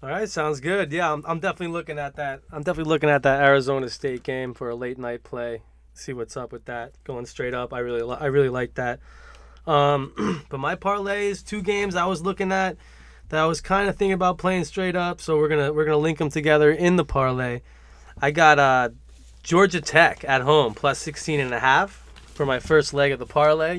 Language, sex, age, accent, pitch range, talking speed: English, male, 20-39, American, 130-170 Hz, 225 wpm